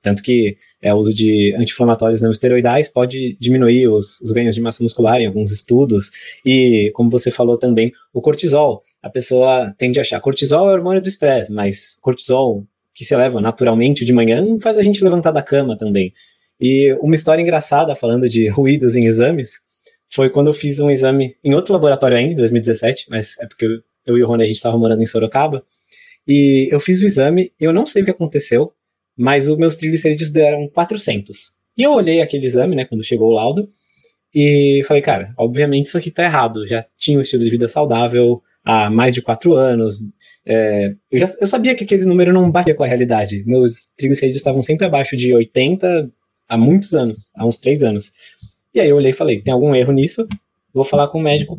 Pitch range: 115-155 Hz